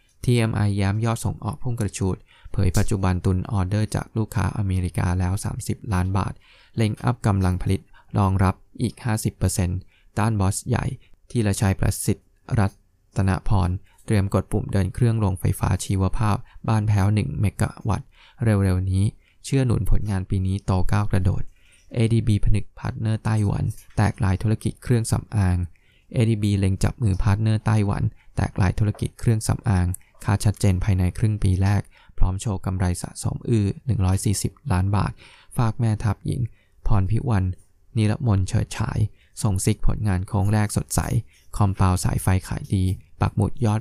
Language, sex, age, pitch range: Thai, male, 20-39, 95-115 Hz